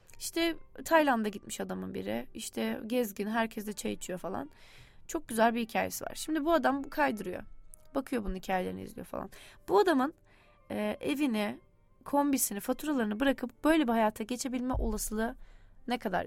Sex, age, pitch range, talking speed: female, 20-39, 210-285 Hz, 145 wpm